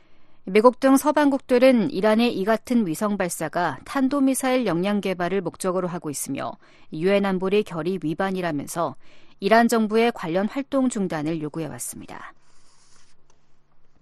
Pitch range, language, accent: 180-235 Hz, Korean, native